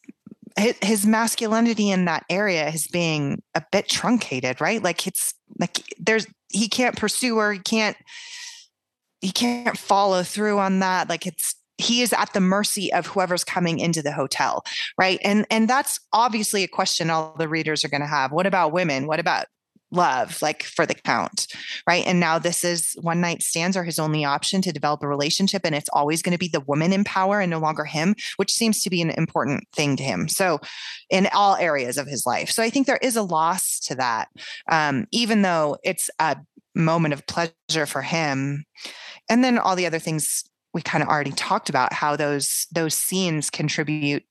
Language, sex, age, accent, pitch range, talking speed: English, female, 20-39, American, 145-195 Hz, 200 wpm